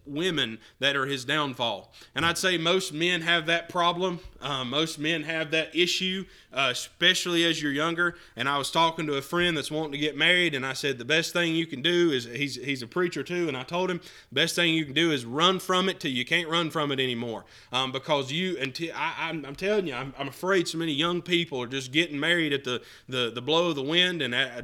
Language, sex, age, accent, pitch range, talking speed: English, male, 20-39, American, 140-175 Hz, 245 wpm